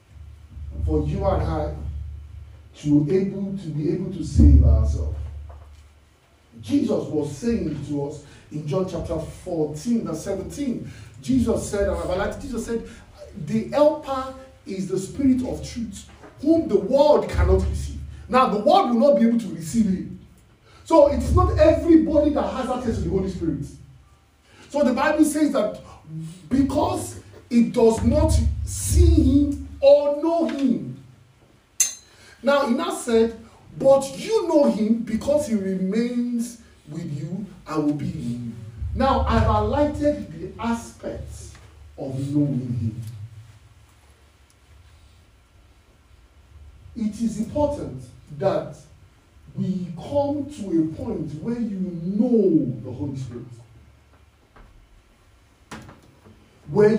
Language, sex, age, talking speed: English, male, 40-59, 125 wpm